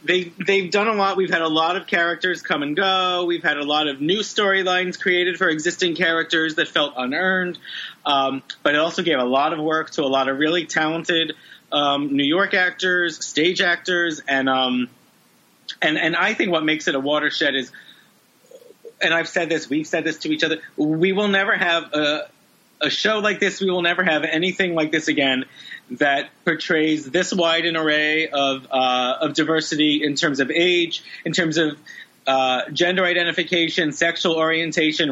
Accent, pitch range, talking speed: American, 150-180 Hz, 190 wpm